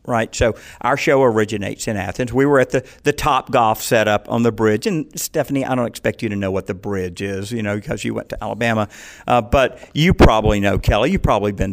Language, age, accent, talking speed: English, 50-69, American, 235 wpm